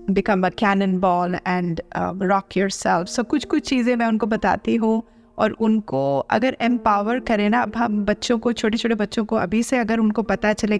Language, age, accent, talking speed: Hindi, 30-49, native, 200 wpm